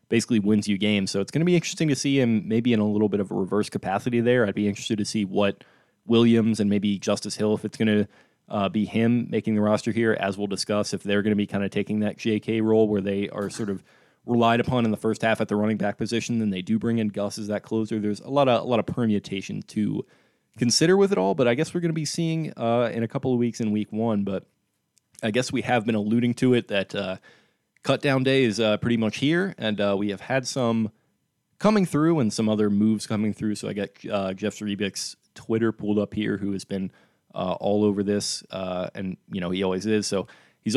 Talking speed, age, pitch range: 255 wpm, 20-39, 100-120 Hz